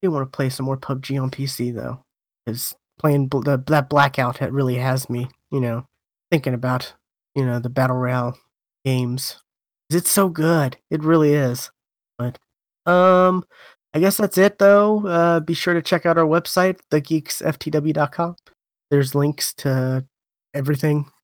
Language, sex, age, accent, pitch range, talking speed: English, male, 20-39, American, 130-150 Hz, 160 wpm